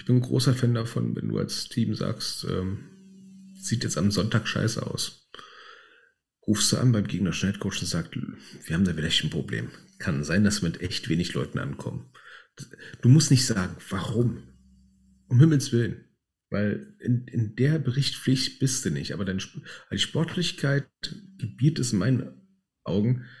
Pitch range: 105-140 Hz